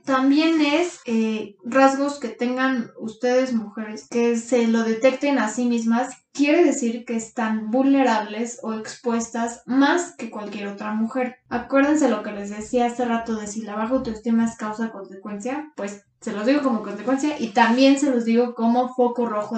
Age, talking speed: 20-39, 170 wpm